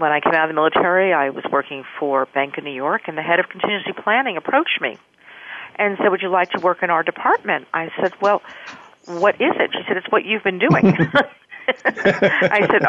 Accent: American